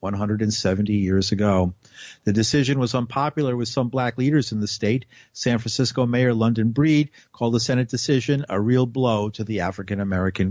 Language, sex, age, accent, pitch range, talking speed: English, male, 50-69, American, 110-135 Hz, 170 wpm